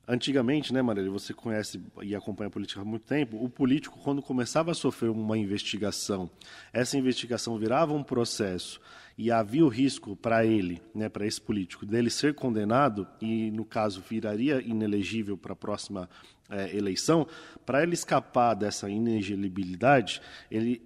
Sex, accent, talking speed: male, Brazilian, 155 wpm